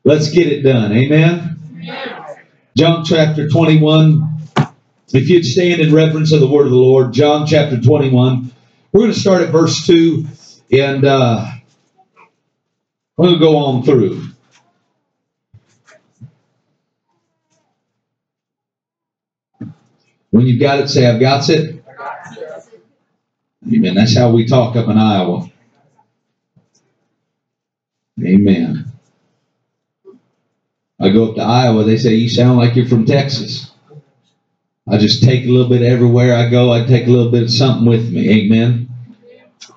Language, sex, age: English, male, 50-69